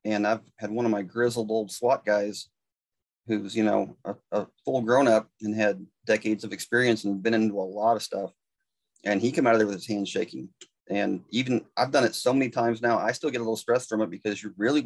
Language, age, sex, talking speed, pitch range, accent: English, 30-49, male, 240 wpm, 105-120 Hz, American